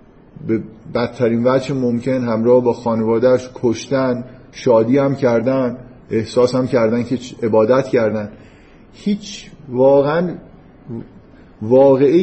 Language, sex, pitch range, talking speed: Persian, male, 120-155 Hz, 100 wpm